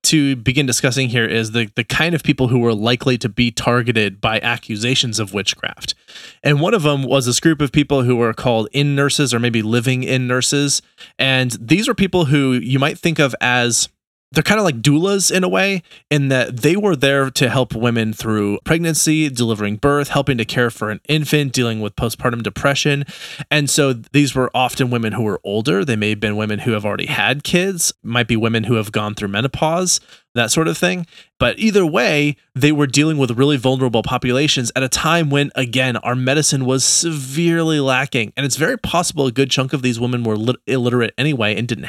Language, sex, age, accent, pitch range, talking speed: English, male, 20-39, American, 120-150 Hz, 210 wpm